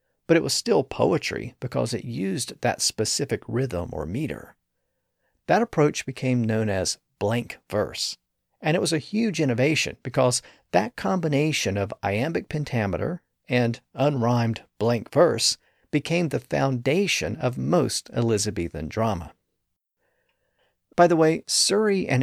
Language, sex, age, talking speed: English, male, 50-69, 130 wpm